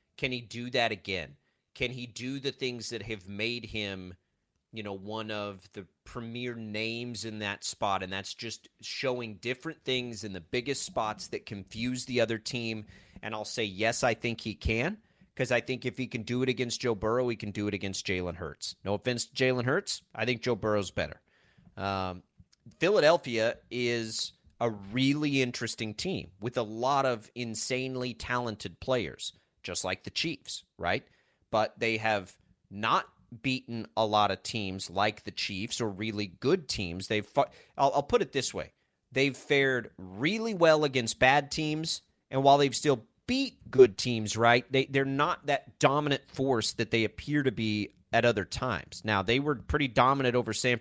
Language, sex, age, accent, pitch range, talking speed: English, male, 30-49, American, 105-130 Hz, 180 wpm